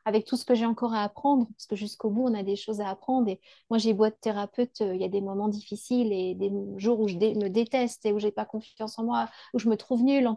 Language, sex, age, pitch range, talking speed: French, female, 30-49, 215-255 Hz, 305 wpm